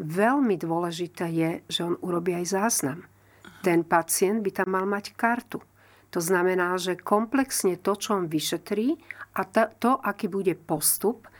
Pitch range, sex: 170-215 Hz, female